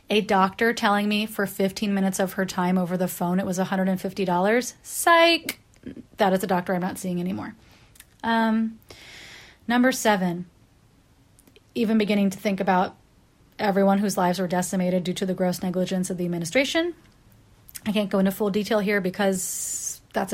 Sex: female